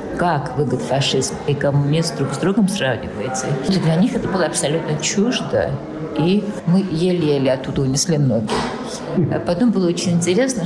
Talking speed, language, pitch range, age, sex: 150 wpm, Russian, 145-190 Hz, 50-69, female